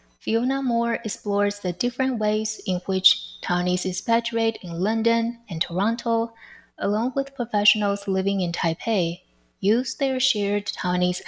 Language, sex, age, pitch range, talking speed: English, female, 20-39, 170-225 Hz, 130 wpm